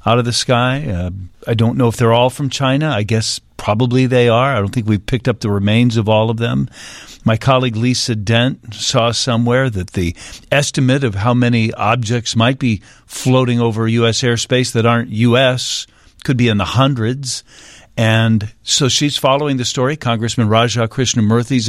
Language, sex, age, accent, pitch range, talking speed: English, male, 50-69, American, 110-130 Hz, 185 wpm